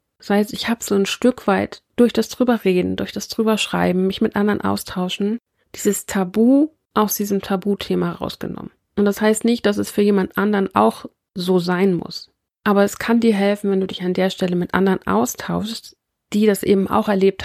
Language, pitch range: German, 190-215 Hz